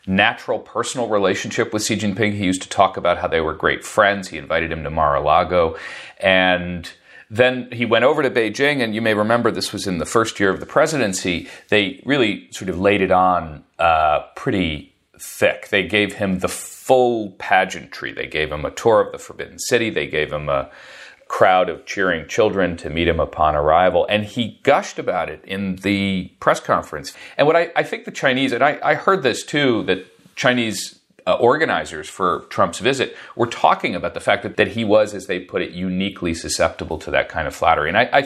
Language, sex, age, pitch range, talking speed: English, male, 40-59, 95-120 Hz, 205 wpm